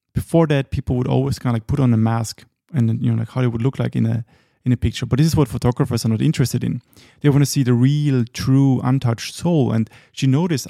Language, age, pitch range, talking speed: English, 30-49, 115-145 Hz, 265 wpm